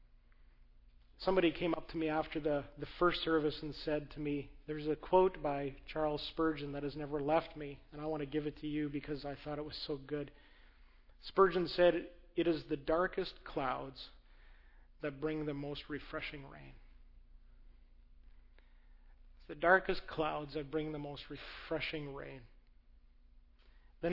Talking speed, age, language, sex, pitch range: 160 wpm, 40-59, English, male, 135-180 Hz